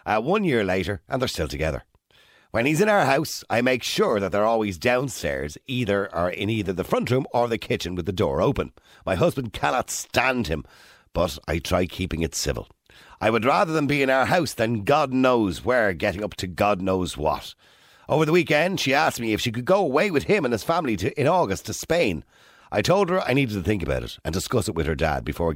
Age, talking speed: 50-69, 230 wpm